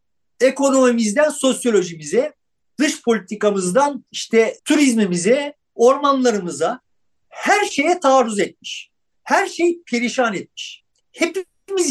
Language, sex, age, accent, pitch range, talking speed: Turkish, male, 50-69, native, 220-295 Hz, 80 wpm